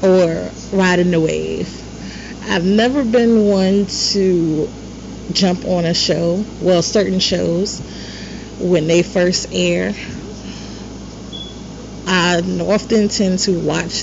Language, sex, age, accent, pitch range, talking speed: English, female, 30-49, American, 170-205 Hz, 105 wpm